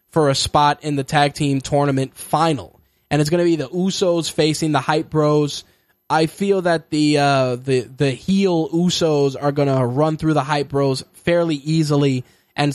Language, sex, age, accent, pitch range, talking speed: English, male, 10-29, American, 140-165 Hz, 190 wpm